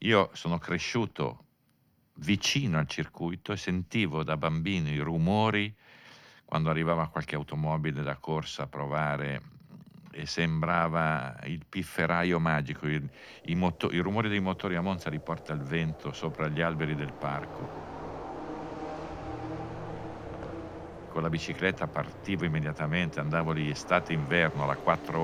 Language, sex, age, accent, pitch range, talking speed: Italian, male, 50-69, native, 75-90 Hz, 125 wpm